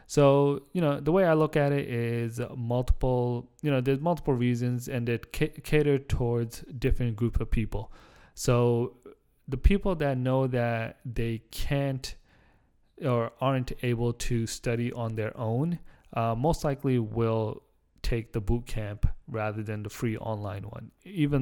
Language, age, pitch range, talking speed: English, 20-39, 110-130 Hz, 155 wpm